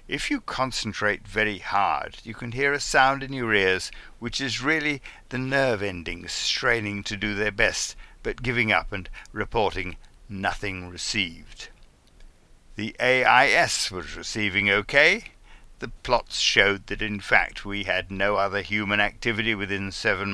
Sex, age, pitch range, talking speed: male, 60-79, 95-115 Hz, 150 wpm